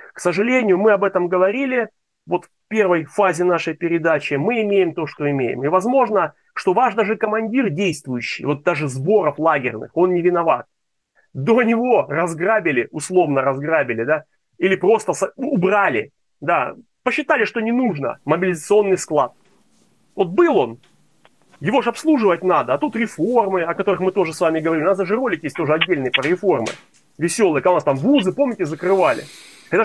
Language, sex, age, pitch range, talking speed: Russian, male, 30-49, 155-220 Hz, 165 wpm